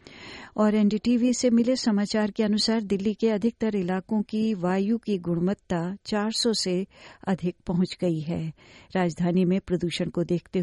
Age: 60-79